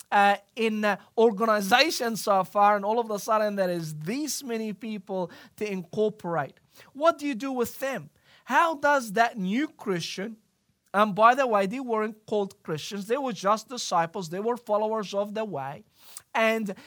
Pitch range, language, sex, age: 195-255 Hz, English, male, 40-59